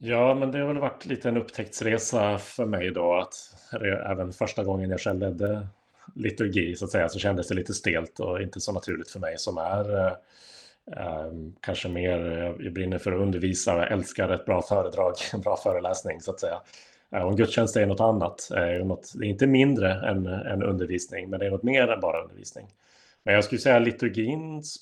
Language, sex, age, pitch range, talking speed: Swedish, male, 30-49, 95-115 Hz, 205 wpm